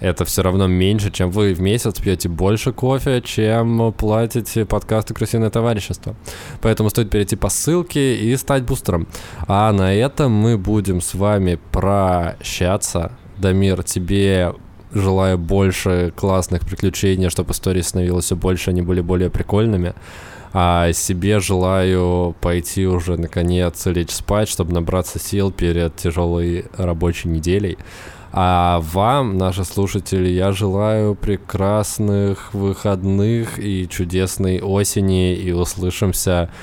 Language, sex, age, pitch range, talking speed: Russian, male, 20-39, 90-105 Hz, 125 wpm